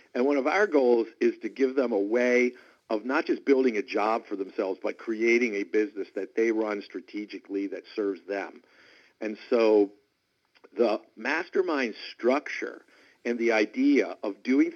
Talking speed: 165 wpm